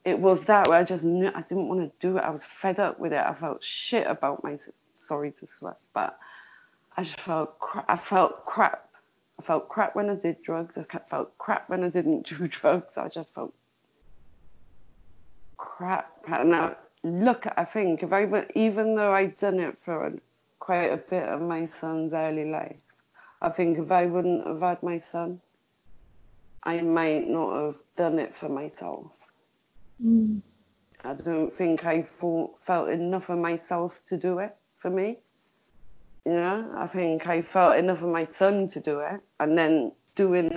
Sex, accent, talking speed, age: female, British, 175 wpm, 30-49